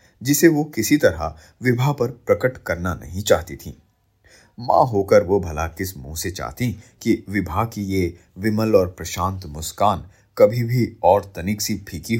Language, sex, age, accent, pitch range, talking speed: Hindi, male, 30-49, native, 90-125 Hz, 160 wpm